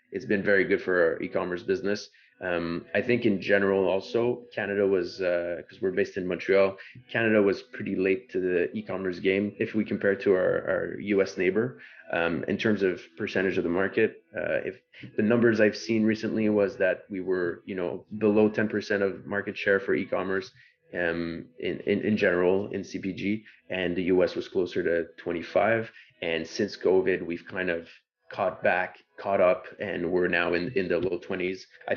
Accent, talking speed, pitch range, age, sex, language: Canadian, 190 wpm, 90-110 Hz, 30-49, male, English